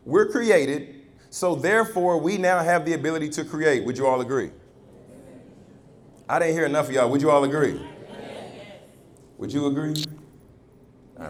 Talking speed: 155 wpm